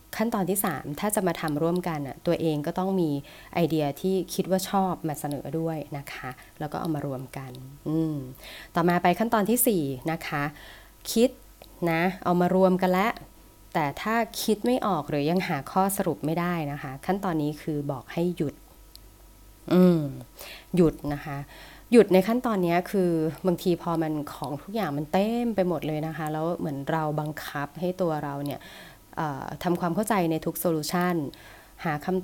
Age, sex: 20-39, female